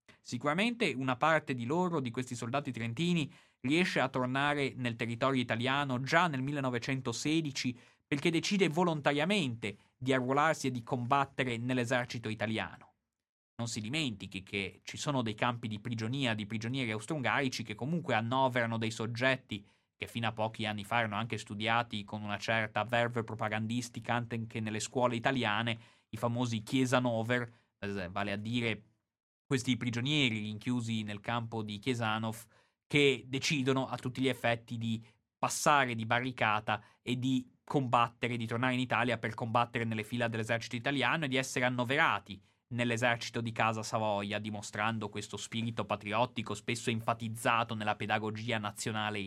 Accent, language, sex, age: native, Italian, male, 30-49